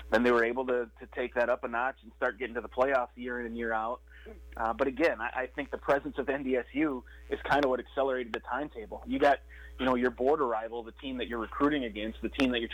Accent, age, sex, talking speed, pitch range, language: American, 20-39, male, 265 wpm, 115-140 Hz, English